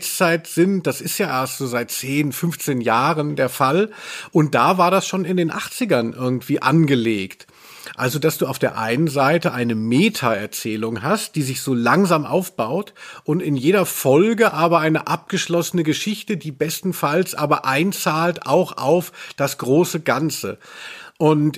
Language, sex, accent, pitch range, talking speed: German, male, German, 140-180 Hz, 155 wpm